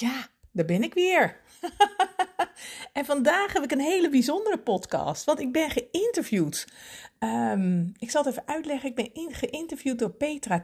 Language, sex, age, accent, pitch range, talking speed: Dutch, female, 50-69, Dutch, 185-265 Hz, 160 wpm